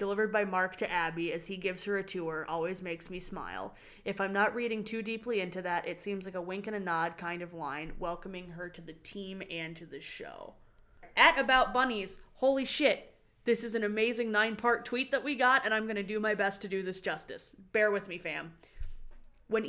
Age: 20-39